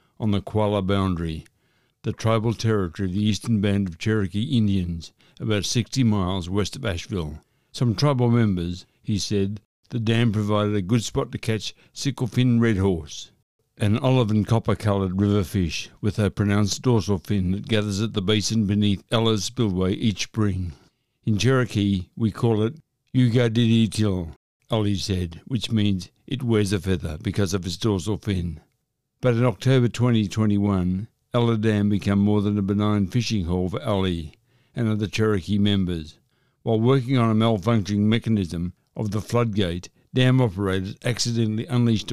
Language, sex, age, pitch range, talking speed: English, male, 60-79, 100-115 Hz, 155 wpm